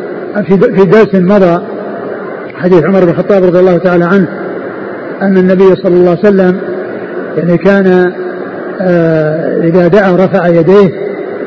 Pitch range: 180-205 Hz